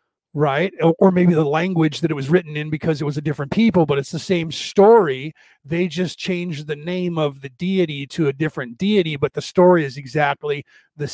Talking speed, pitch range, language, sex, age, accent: 210 wpm, 140-170 Hz, English, male, 40-59, American